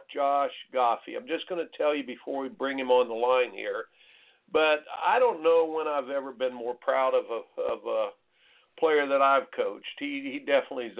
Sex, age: male, 60-79